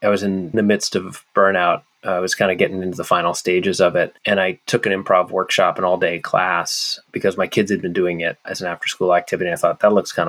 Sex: male